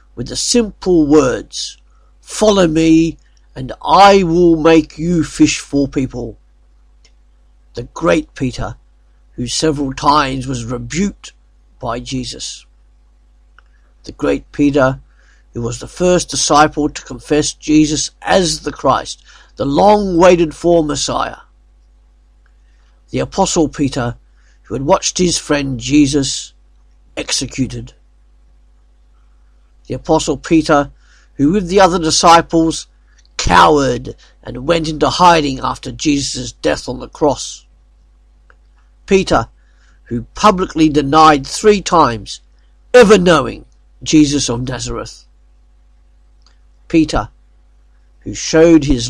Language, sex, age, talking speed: English, male, 50-69, 105 wpm